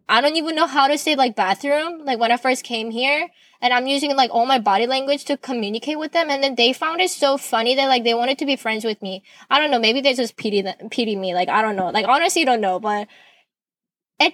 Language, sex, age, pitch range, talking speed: English, female, 10-29, 215-270 Hz, 270 wpm